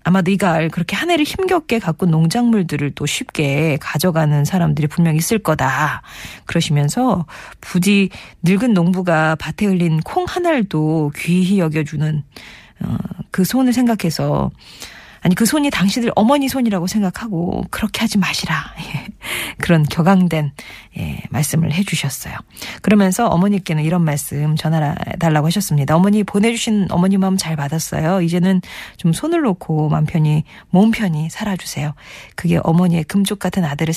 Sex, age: female, 40-59